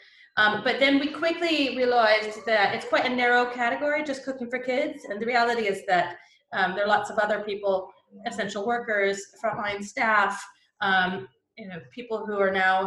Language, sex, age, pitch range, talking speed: English, female, 30-49, 180-235 Hz, 180 wpm